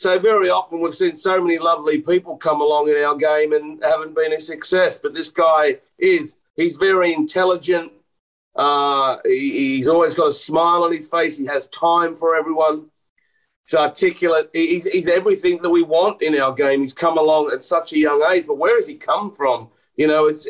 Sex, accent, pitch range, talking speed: male, Australian, 145-185 Hz, 200 wpm